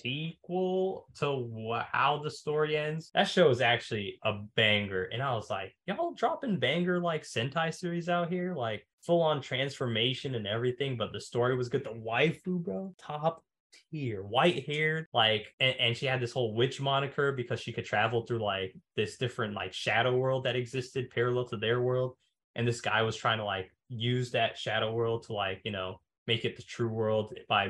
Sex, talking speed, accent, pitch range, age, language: male, 190 wpm, American, 110-145 Hz, 20-39, English